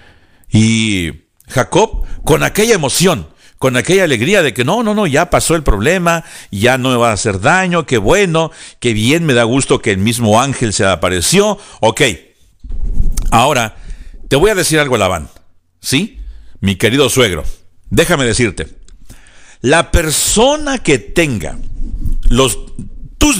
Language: Spanish